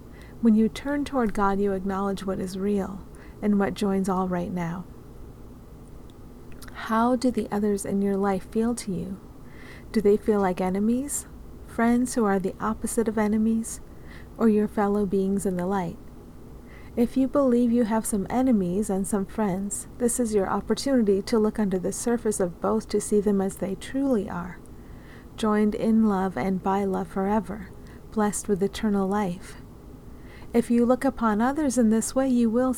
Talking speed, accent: 170 wpm, American